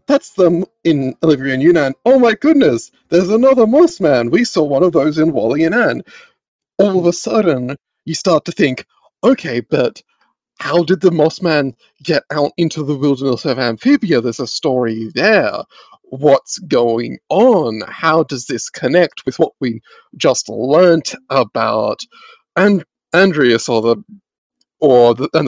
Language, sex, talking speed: English, male, 150 wpm